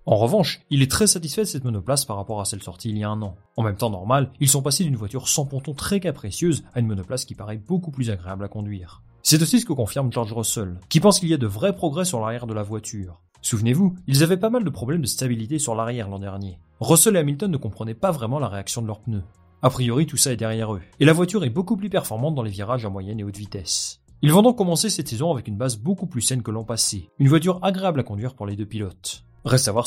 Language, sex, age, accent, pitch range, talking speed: French, male, 30-49, French, 105-155 Hz, 275 wpm